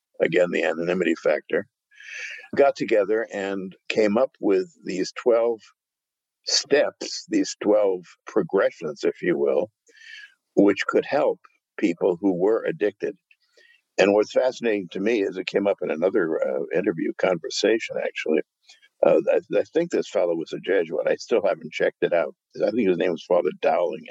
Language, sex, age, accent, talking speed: English, male, 60-79, American, 155 wpm